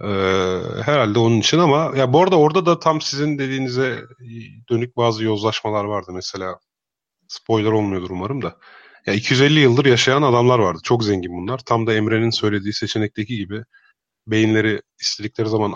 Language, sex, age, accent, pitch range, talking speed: Turkish, male, 30-49, native, 100-130 Hz, 150 wpm